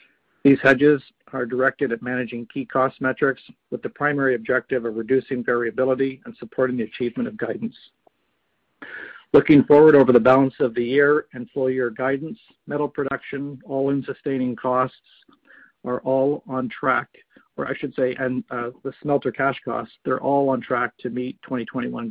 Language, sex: English, male